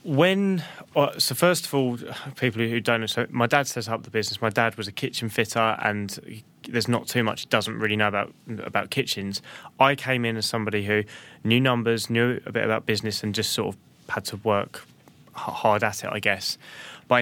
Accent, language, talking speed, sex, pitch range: British, English, 215 wpm, male, 105-120 Hz